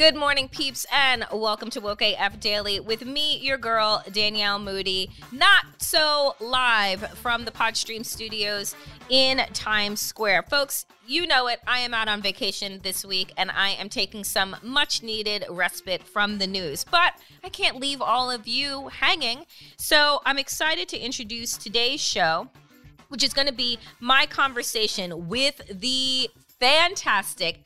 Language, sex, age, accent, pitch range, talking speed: English, female, 30-49, American, 200-260 Hz, 155 wpm